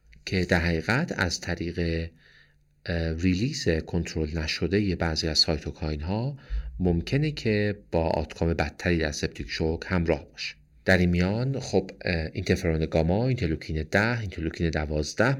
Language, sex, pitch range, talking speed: Persian, male, 80-100 Hz, 125 wpm